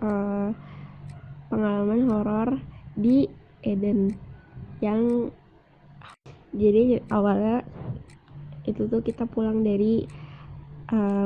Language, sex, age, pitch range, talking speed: Indonesian, female, 20-39, 150-240 Hz, 75 wpm